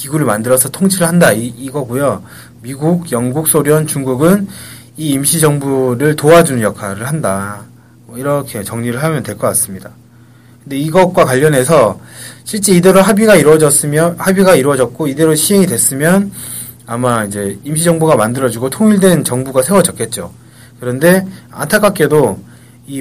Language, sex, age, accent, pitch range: Korean, male, 30-49, native, 120-165 Hz